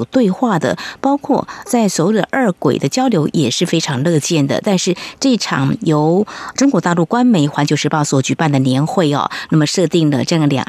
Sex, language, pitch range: female, Chinese, 150-205 Hz